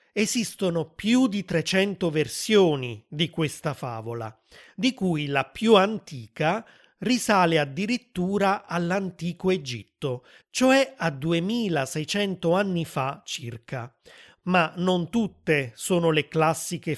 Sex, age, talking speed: male, 30-49, 105 wpm